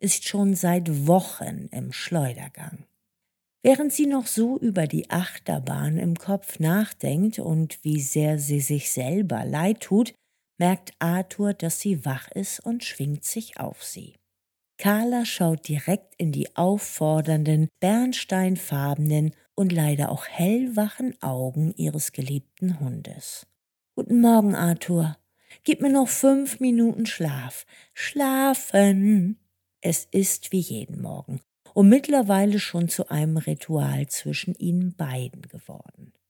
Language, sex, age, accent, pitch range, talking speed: German, female, 50-69, German, 150-205 Hz, 125 wpm